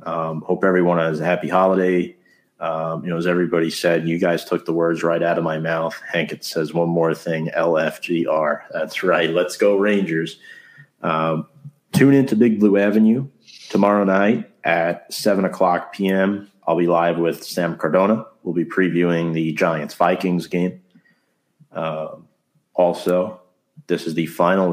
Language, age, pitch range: English, 40-59, 80-100 Hz